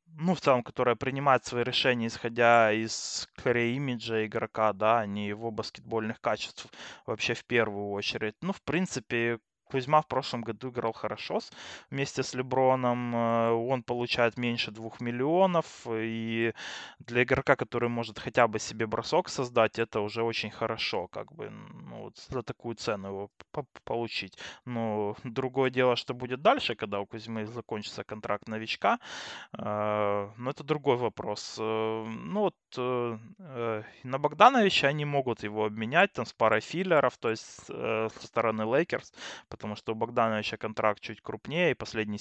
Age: 20-39